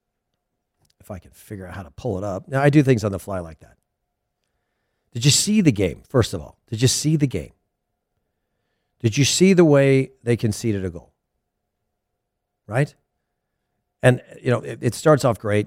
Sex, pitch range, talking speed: male, 100-130 Hz, 190 wpm